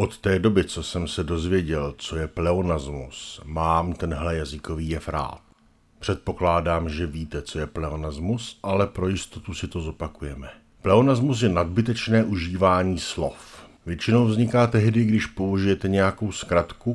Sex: male